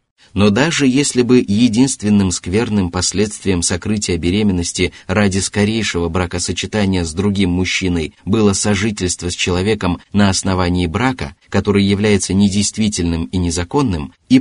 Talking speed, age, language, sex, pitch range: 115 wpm, 30-49, Russian, male, 90-115 Hz